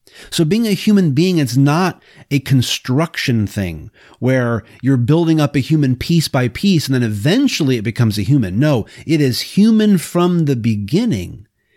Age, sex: 30-49, male